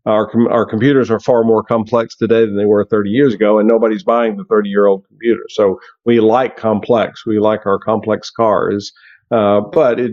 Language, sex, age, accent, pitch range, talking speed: English, male, 50-69, American, 110-135 Hz, 205 wpm